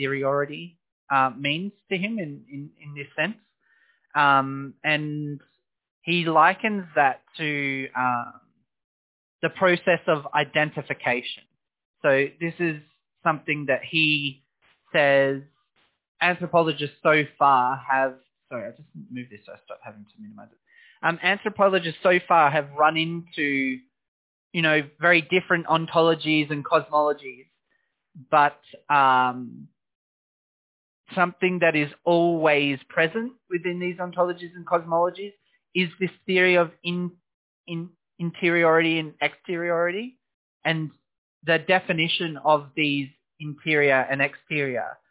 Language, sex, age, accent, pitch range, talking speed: English, male, 20-39, Australian, 140-170 Hz, 110 wpm